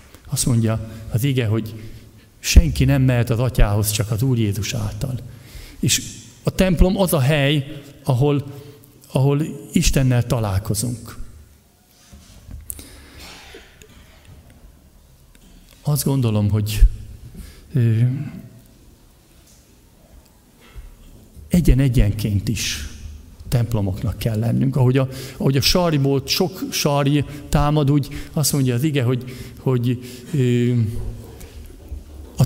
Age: 50-69